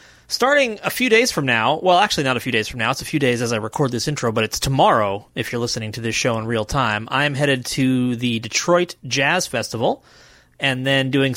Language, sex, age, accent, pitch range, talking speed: English, male, 30-49, American, 115-150 Hz, 235 wpm